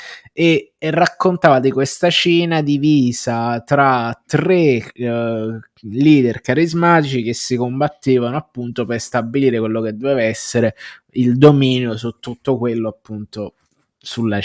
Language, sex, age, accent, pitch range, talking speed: Italian, male, 20-39, native, 115-140 Hz, 120 wpm